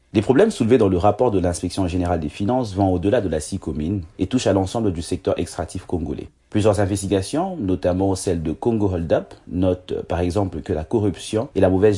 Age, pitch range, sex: 30-49, 90-110 Hz, male